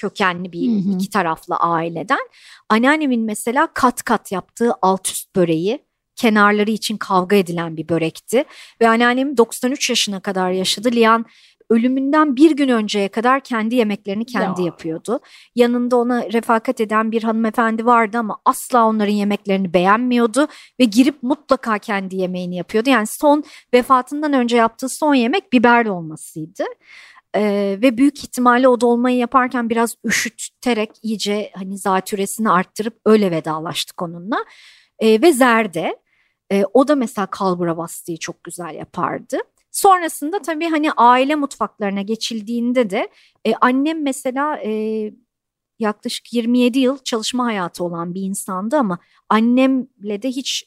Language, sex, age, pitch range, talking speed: Turkish, male, 40-59, 195-255 Hz, 135 wpm